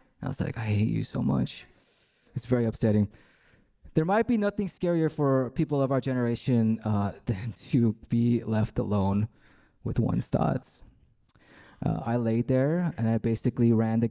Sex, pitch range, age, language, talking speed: male, 100-125 Hz, 20-39, English, 165 wpm